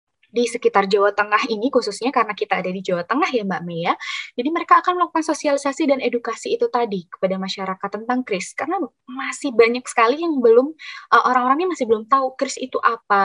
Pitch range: 195-265 Hz